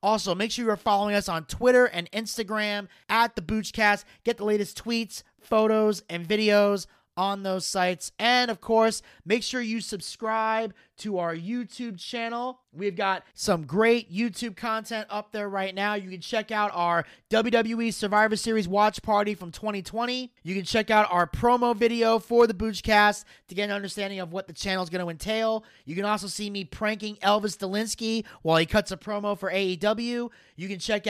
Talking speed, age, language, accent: 185 wpm, 30-49, English, American